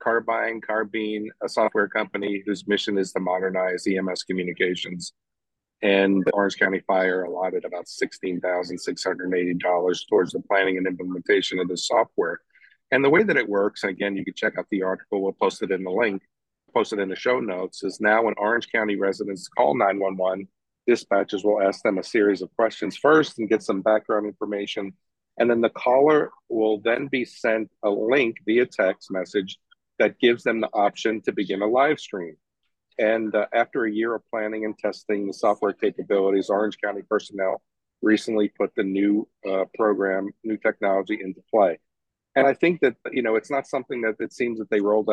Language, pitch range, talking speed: English, 95-110 Hz, 185 wpm